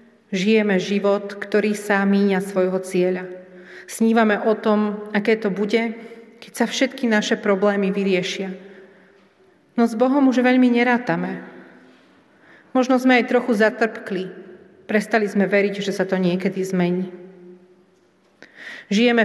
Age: 40-59